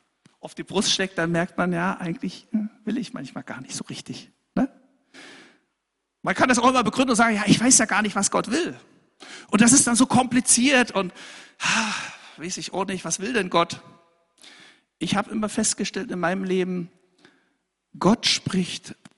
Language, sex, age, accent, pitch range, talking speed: German, male, 60-79, German, 190-260 Hz, 180 wpm